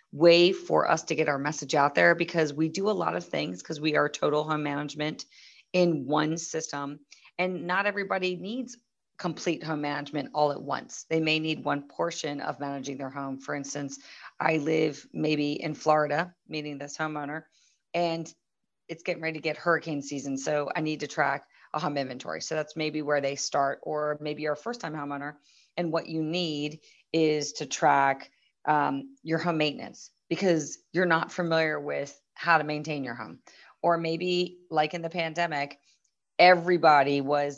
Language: English